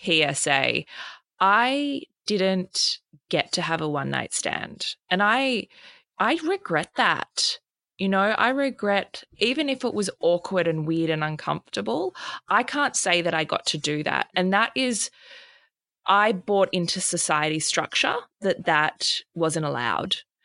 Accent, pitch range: Australian, 160-230 Hz